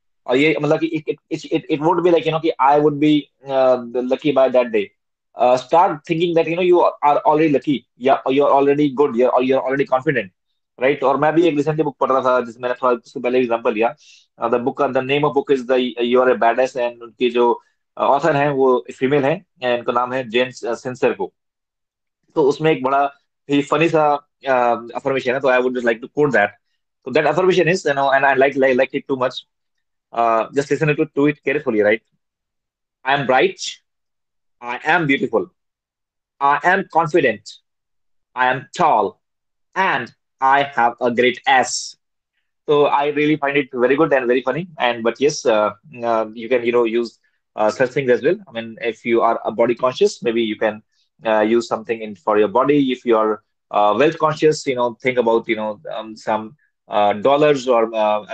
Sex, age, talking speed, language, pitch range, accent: male, 20-39, 115 wpm, Hindi, 120-150 Hz, native